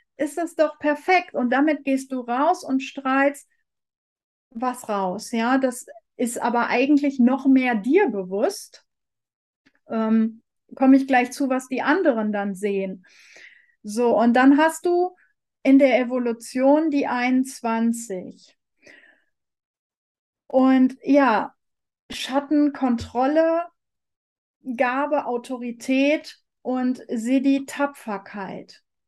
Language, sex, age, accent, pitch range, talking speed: German, female, 40-59, German, 235-280 Hz, 105 wpm